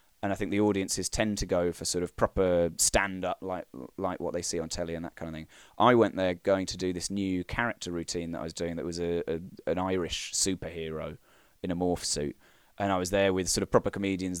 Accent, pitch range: British, 85-100 Hz